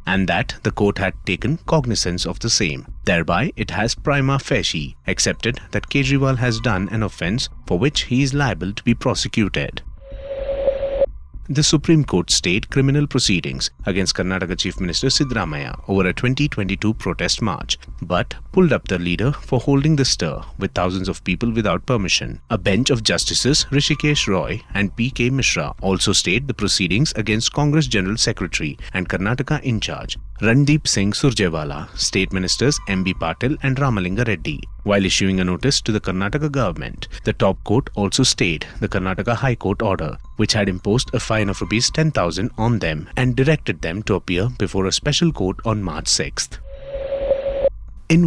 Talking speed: 170 wpm